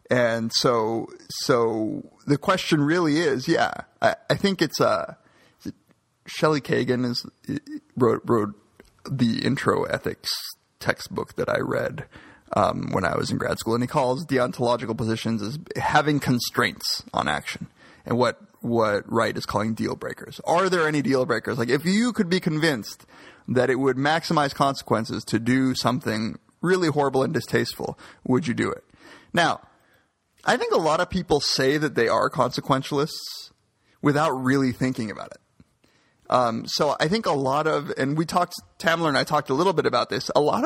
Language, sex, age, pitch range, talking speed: English, male, 30-49, 125-165 Hz, 175 wpm